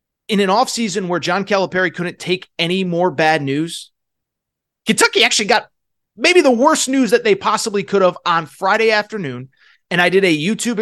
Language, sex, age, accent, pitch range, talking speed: English, male, 30-49, American, 155-220 Hz, 175 wpm